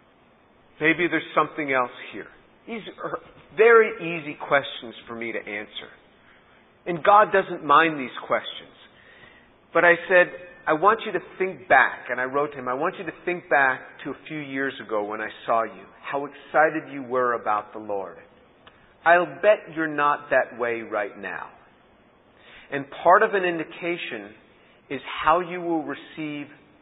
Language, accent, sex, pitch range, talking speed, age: English, American, male, 125-160 Hz, 165 wpm, 40-59